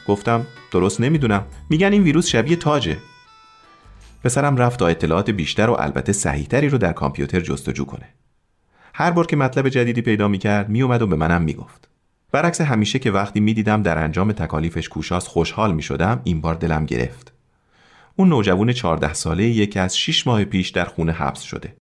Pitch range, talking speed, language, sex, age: 85-125 Hz, 165 wpm, Persian, male, 40-59